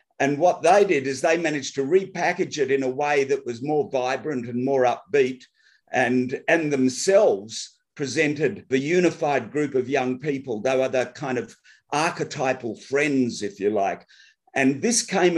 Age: 50-69